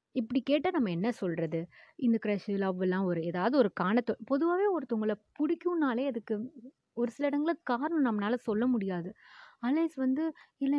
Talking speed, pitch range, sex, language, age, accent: 145 wpm, 200-260 Hz, female, Tamil, 20-39, native